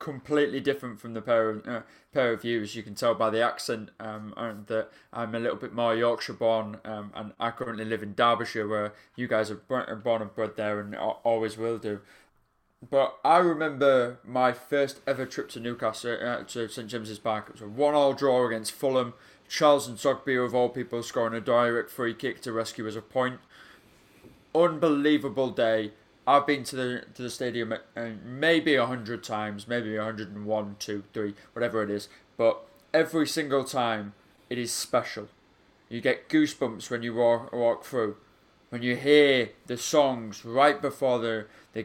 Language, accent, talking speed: English, British, 180 wpm